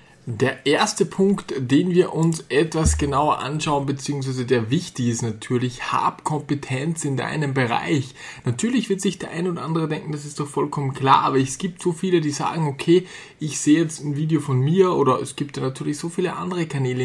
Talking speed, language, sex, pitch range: 195 wpm, German, male, 135-175 Hz